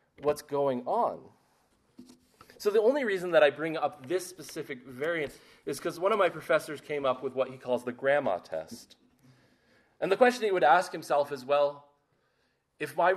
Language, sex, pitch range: English, male, 135-195 Hz